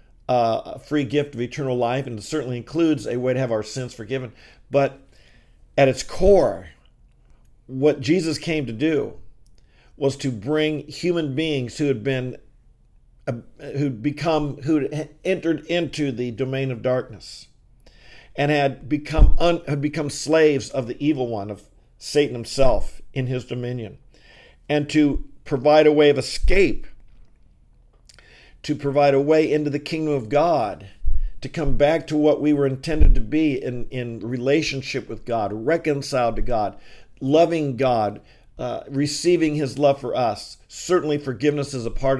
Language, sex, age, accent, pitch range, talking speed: English, male, 50-69, American, 125-150 Hz, 155 wpm